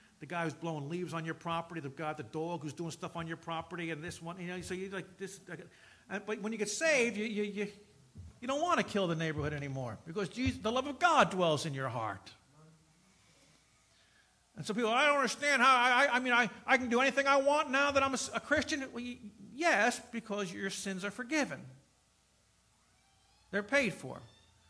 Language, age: English, 50-69